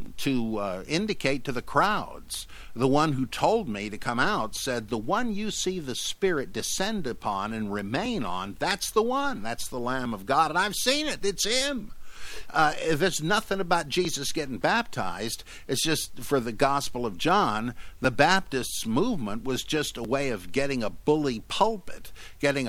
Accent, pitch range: American, 105-145 Hz